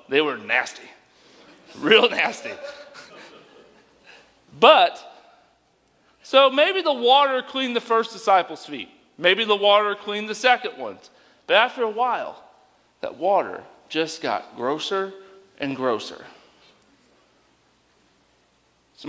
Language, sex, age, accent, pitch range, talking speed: English, male, 40-59, American, 155-235 Hz, 105 wpm